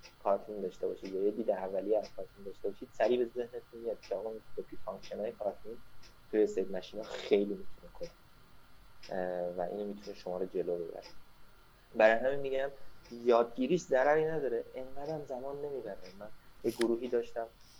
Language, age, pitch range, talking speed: Persian, 20-39, 100-155 Hz, 160 wpm